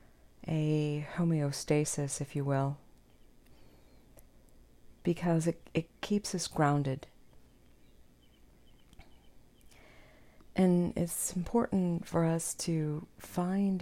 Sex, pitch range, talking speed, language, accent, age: female, 140-165 Hz, 80 wpm, English, American, 40-59